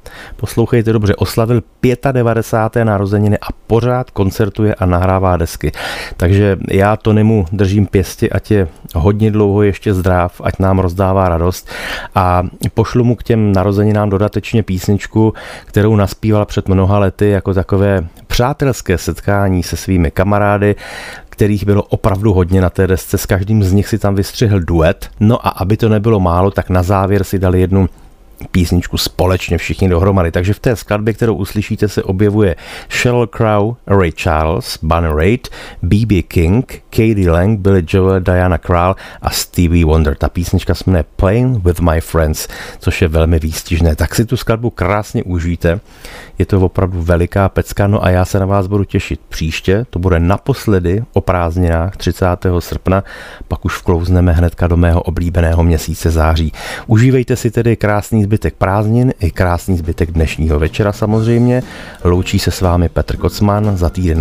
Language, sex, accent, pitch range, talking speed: Czech, male, native, 90-105 Hz, 160 wpm